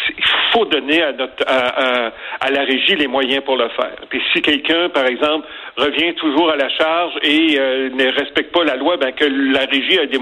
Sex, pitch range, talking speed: male, 135-170 Hz, 225 wpm